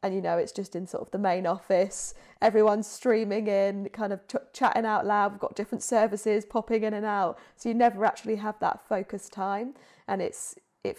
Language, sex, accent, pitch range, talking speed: English, female, British, 180-210 Hz, 215 wpm